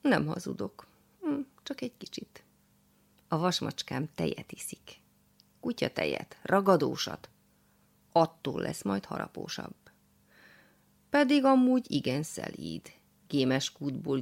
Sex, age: female, 30-49